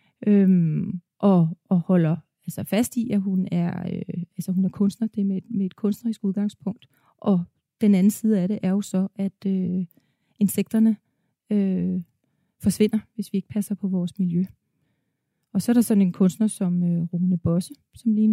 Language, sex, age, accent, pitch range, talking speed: Danish, female, 30-49, native, 190-220 Hz, 185 wpm